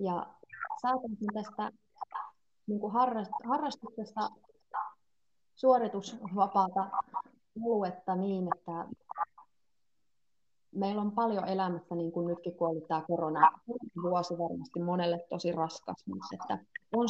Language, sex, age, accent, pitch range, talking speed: Finnish, female, 20-39, native, 175-245 Hz, 95 wpm